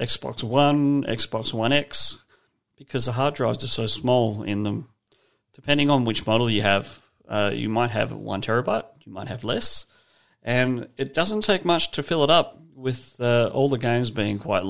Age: 40-59